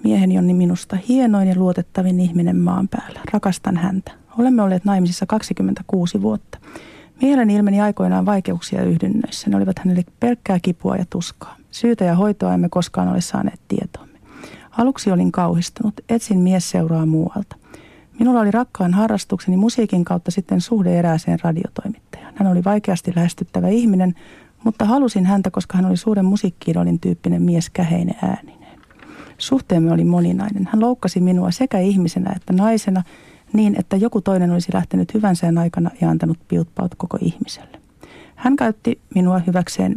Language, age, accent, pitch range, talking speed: Finnish, 40-59, native, 175-210 Hz, 145 wpm